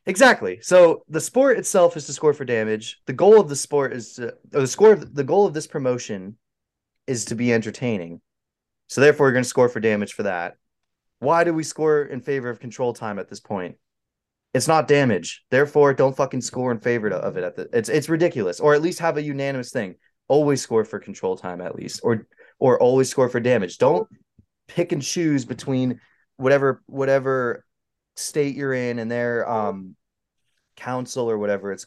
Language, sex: English, male